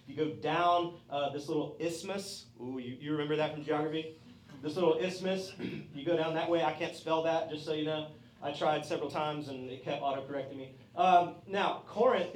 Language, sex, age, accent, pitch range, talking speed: English, male, 30-49, American, 155-220 Hz, 205 wpm